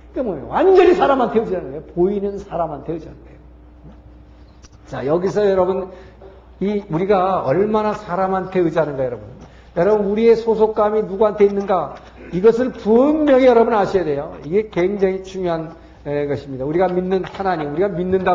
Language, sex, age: Korean, male, 50-69